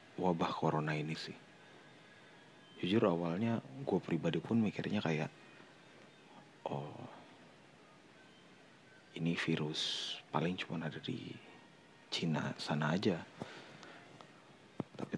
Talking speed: 85 wpm